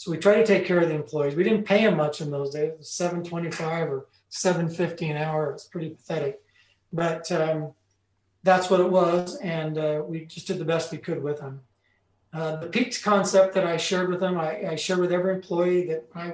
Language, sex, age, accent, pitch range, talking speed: English, male, 40-59, American, 155-180 Hz, 220 wpm